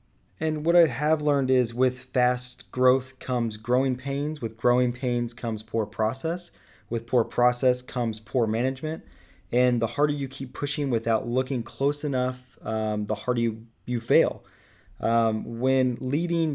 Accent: American